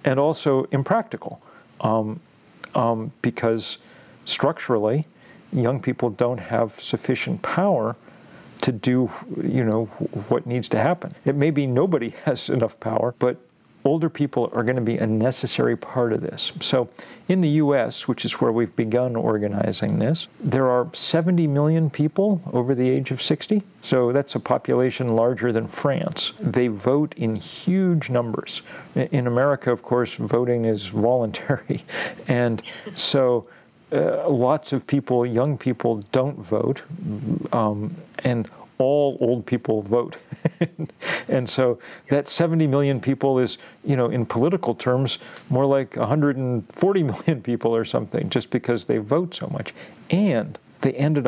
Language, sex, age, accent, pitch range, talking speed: English, male, 50-69, American, 120-150 Hz, 145 wpm